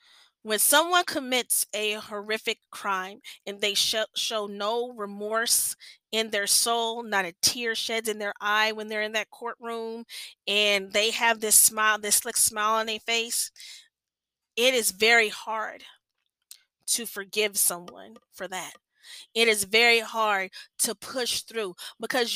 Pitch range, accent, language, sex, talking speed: 200-230 Hz, American, English, female, 150 wpm